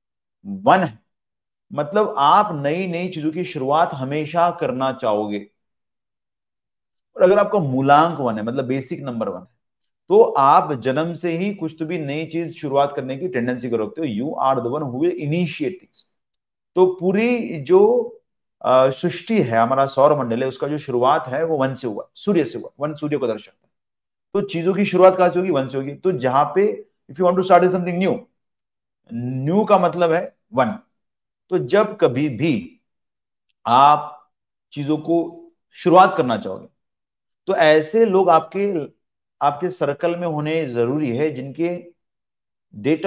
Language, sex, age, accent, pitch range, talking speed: Hindi, male, 40-59, native, 130-185 Hz, 160 wpm